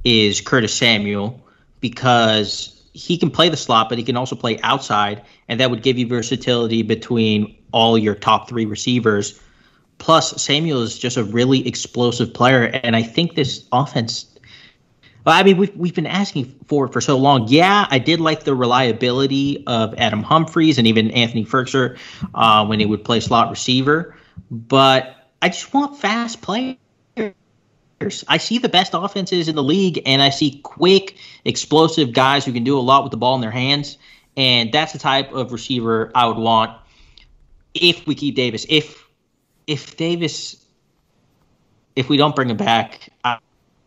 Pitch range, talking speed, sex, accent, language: 115-145 Hz, 170 wpm, male, American, English